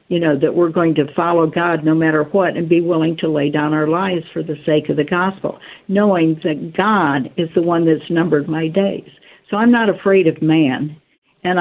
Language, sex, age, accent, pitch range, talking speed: English, female, 60-79, American, 165-210 Hz, 215 wpm